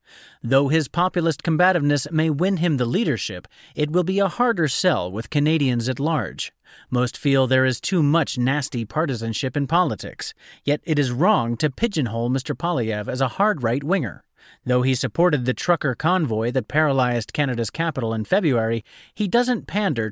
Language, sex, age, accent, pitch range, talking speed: English, male, 30-49, American, 125-175 Hz, 170 wpm